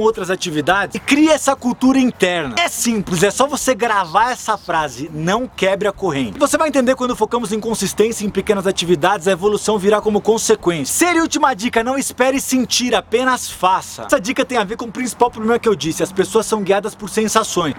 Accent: Brazilian